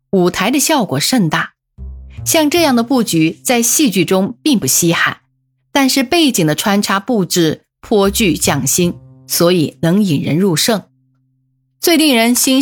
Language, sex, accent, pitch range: Chinese, female, native, 140-230 Hz